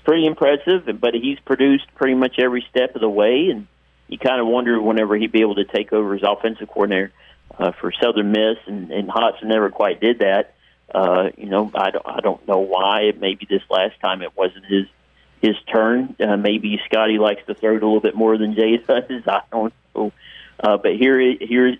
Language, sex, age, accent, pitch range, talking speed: English, male, 40-59, American, 105-120 Hz, 210 wpm